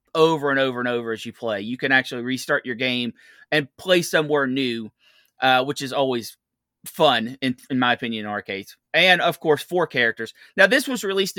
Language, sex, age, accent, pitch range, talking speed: English, male, 30-49, American, 130-175 Hz, 200 wpm